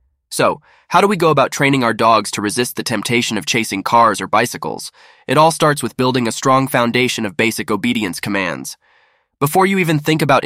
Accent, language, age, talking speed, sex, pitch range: American, English, 20-39, 200 wpm, male, 105-145 Hz